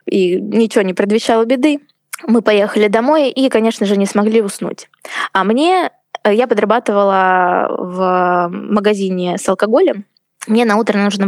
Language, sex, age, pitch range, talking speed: Russian, female, 20-39, 195-240 Hz, 140 wpm